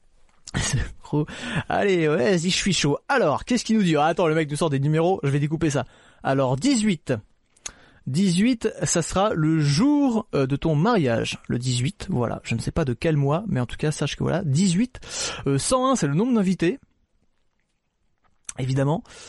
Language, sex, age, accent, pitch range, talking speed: French, male, 30-49, French, 135-190 Hz, 180 wpm